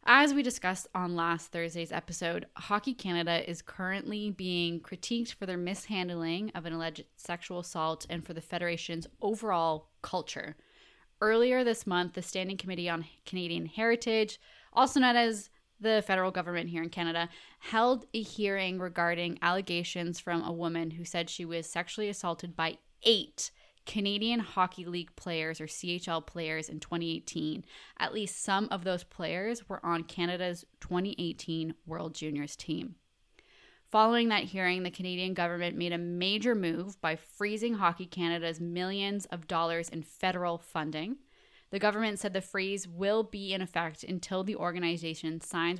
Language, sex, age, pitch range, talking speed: English, female, 10-29, 170-205 Hz, 150 wpm